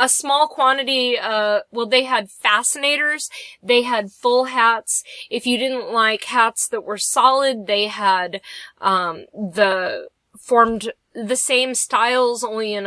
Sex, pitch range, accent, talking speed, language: female, 210-275 Hz, American, 140 wpm, English